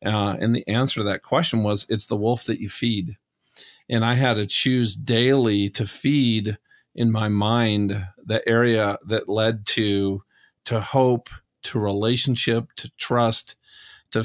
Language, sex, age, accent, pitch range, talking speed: English, male, 40-59, American, 105-120 Hz, 155 wpm